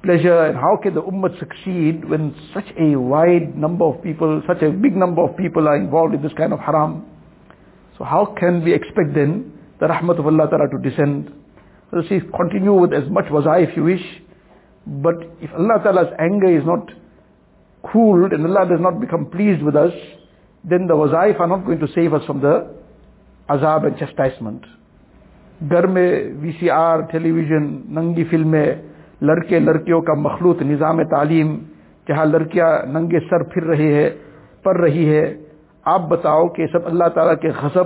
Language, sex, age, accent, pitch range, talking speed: English, male, 60-79, Indian, 150-175 Hz, 145 wpm